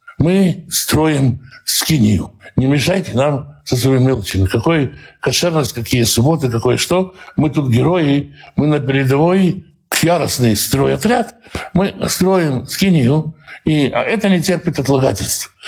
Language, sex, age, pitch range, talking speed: Russian, male, 60-79, 125-170 Hz, 125 wpm